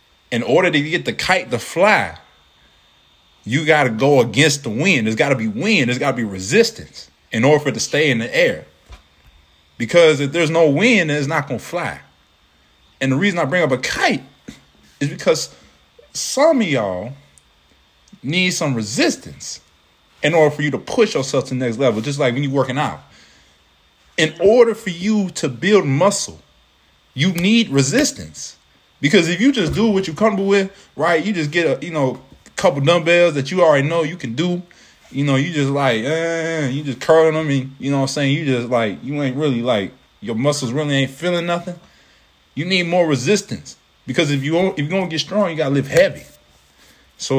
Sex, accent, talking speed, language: male, American, 200 wpm, English